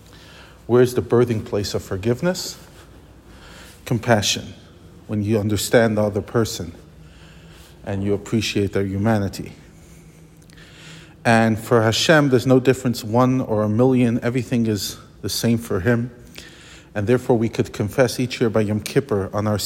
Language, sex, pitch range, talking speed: English, male, 105-120 Hz, 140 wpm